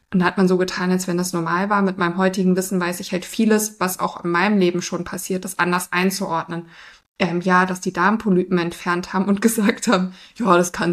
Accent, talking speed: German, 230 wpm